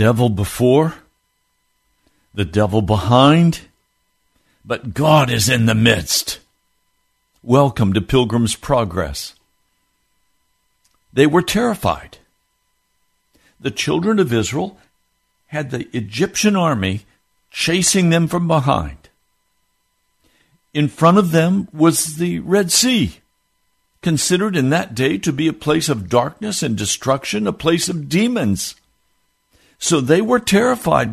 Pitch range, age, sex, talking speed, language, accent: 110-175 Hz, 60-79, male, 110 wpm, English, American